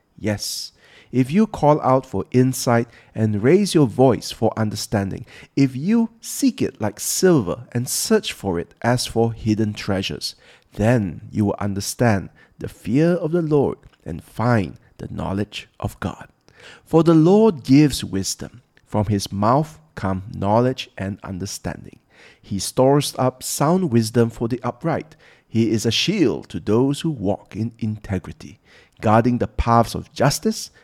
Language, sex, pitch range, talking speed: English, male, 100-130 Hz, 150 wpm